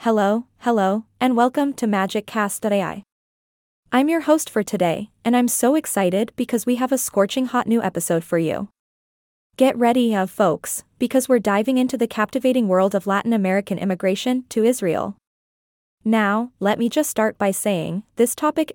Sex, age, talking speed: female, 20-39, 165 wpm